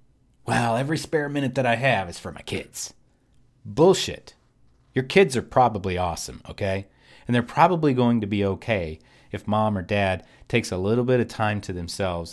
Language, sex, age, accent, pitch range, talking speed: English, male, 40-59, American, 95-130 Hz, 180 wpm